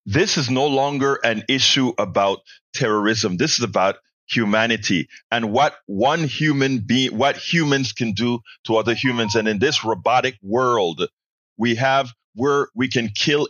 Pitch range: 115-150 Hz